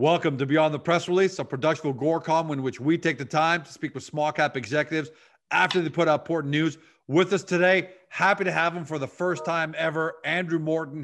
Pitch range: 130-160 Hz